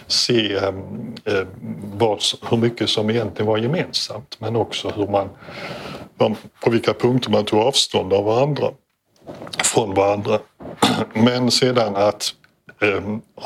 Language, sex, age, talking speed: Swedish, male, 60-79, 125 wpm